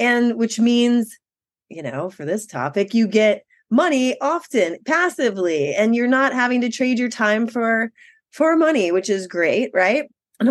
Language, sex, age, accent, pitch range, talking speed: English, female, 30-49, American, 180-245 Hz, 165 wpm